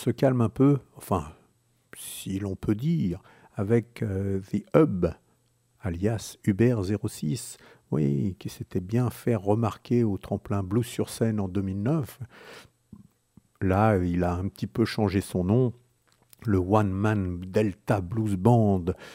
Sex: male